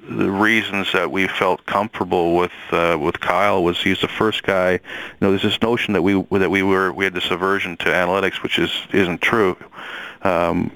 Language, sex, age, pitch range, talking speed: English, male, 40-59, 85-95 Hz, 200 wpm